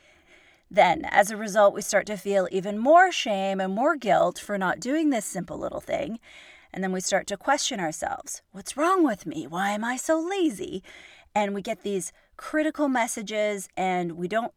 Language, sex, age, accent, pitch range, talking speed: English, female, 30-49, American, 180-245 Hz, 190 wpm